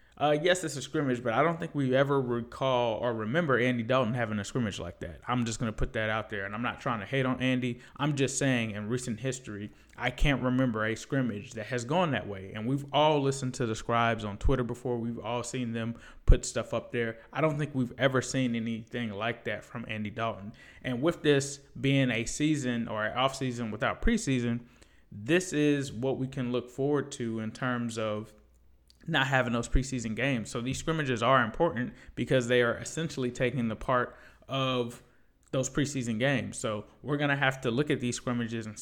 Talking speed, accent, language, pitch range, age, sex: 210 wpm, American, English, 115-135 Hz, 20-39, male